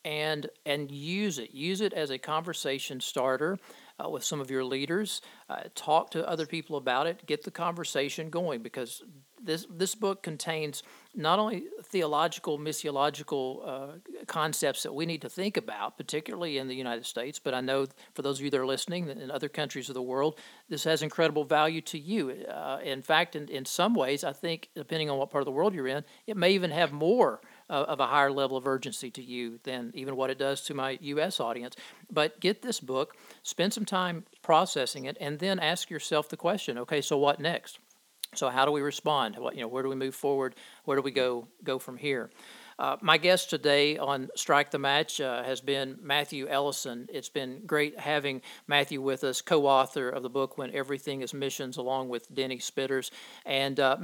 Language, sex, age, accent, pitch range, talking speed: English, male, 50-69, American, 135-165 Hz, 205 wpm